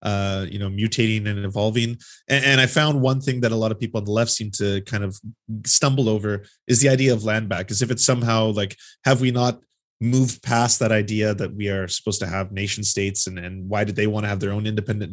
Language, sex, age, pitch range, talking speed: English, male, 20-39, 105-125 Hz, 250 wpm